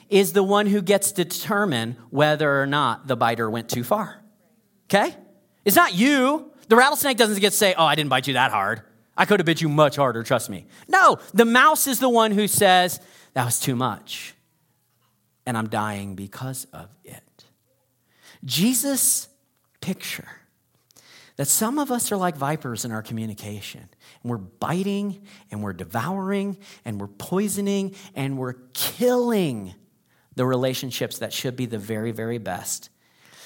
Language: English